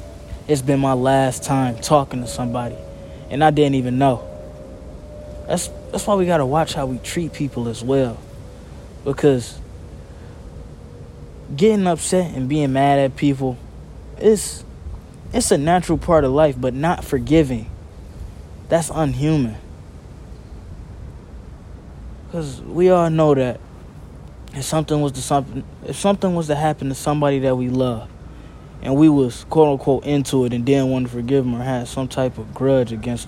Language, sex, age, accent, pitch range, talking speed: English, male, 20-39, American, 100-145 Hz, 155 wpm